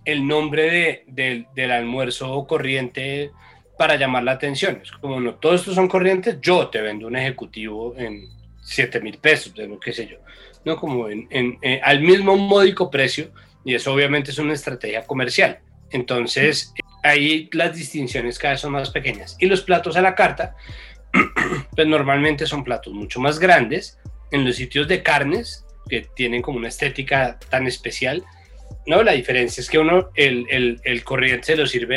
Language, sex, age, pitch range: Spanish, male, 30-49, 125-155 Hz